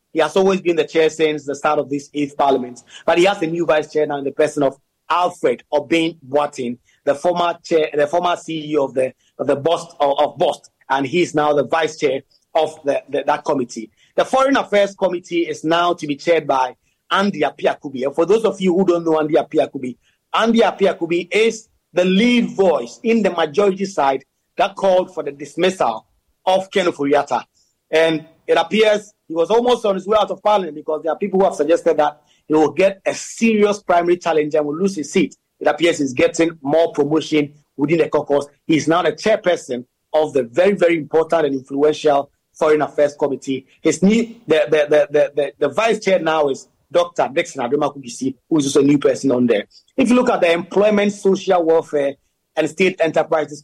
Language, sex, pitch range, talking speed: English, male, 145-185 Hz, 205 wpm